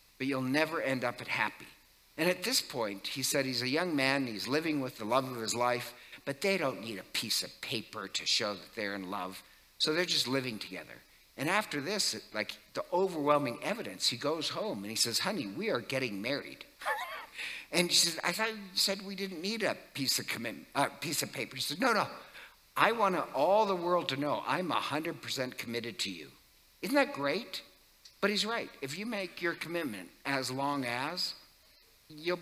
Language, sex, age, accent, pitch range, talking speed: English, male, 60-79, American, 130-180 Hz, 210 wpm